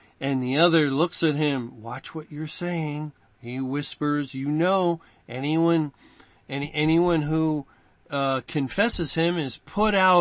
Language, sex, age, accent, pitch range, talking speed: English, male, 50-69, American, 135-170 Hz, 140 wpm